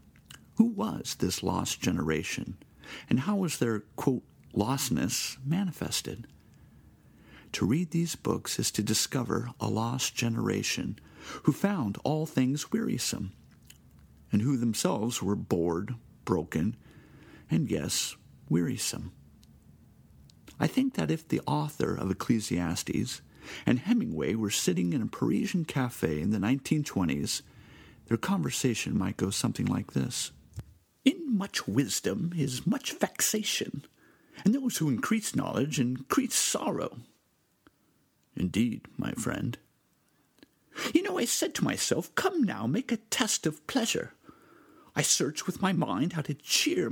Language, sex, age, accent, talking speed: English, male, 50-69, American, 125 wpm